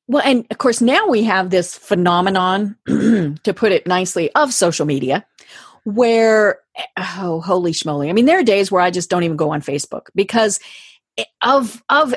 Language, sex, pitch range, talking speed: English, female, 175-260 Hz, 180 wpm